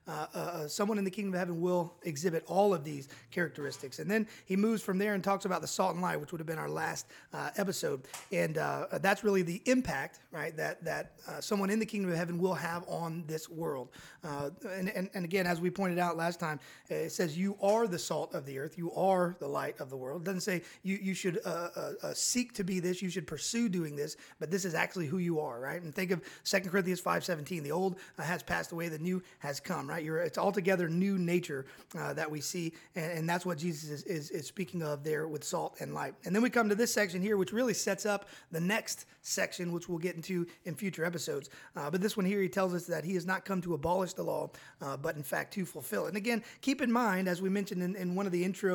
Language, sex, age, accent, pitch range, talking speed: English, male, 30-49, American, 165-195 Hz, 255 wpm